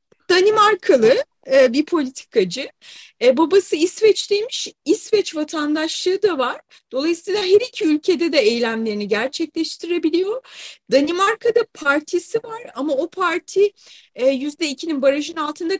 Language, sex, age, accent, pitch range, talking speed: Turkish, female, 30-49, native, 280-415 Hz, 100 wpm